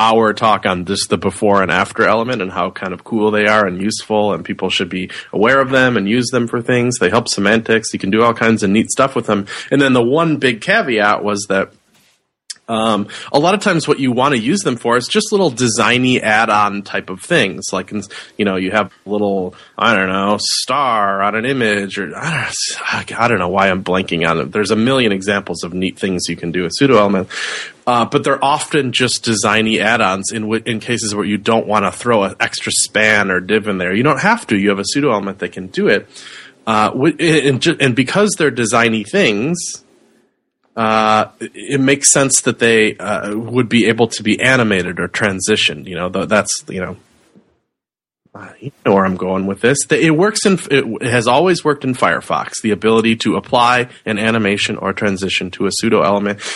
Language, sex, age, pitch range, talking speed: English, male, 30-49, 100-125 Hz, 215 wpm